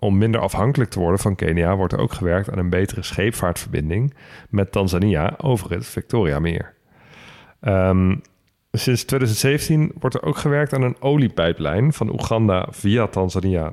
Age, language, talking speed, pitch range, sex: 40-59, Dutch, 155 wpm, 95-125 Hz, male